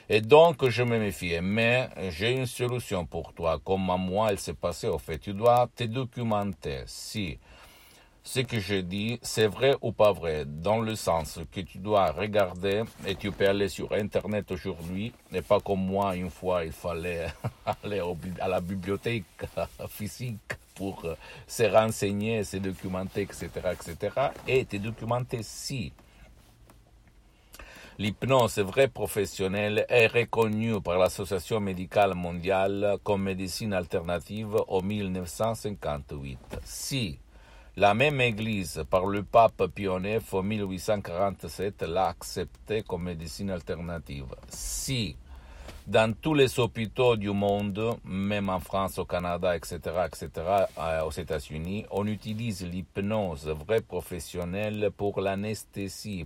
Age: 60-79